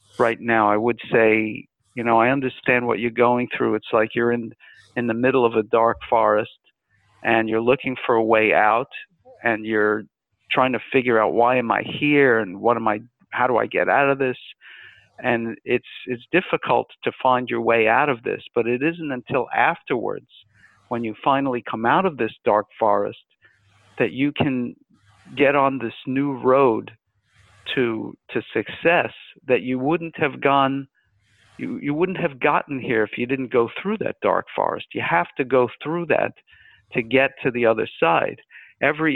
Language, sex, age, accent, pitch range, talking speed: English, male, 50-69, American, 115-140 Hz, 185 wpm